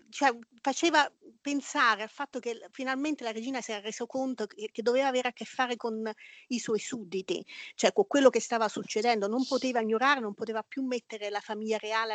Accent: native